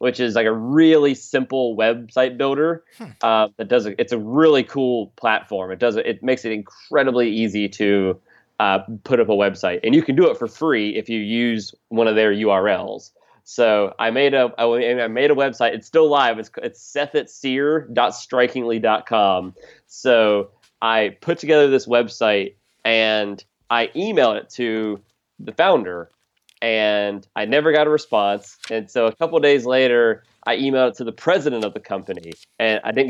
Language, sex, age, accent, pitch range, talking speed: English, male, 30-49, American, 110-135 Hz, 170 wpm